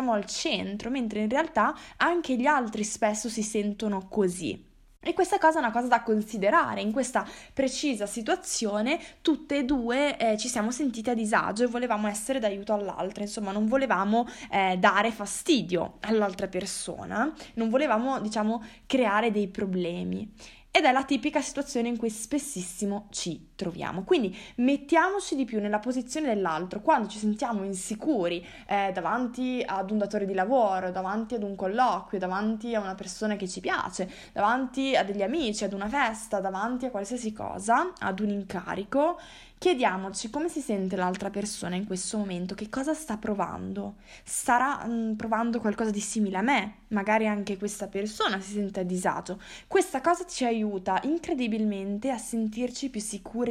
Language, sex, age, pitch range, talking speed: Italian, female, 20-39, 200-260 Hz, 160 wpm